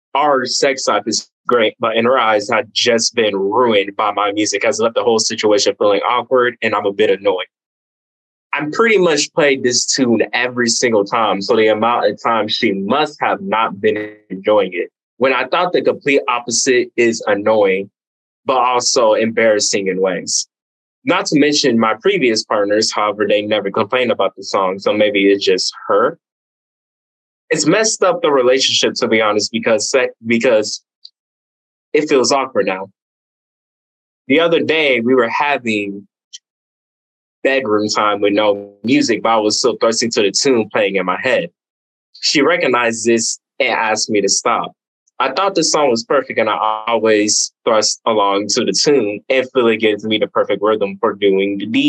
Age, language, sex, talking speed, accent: 20-39, English, male, 170 wpm, American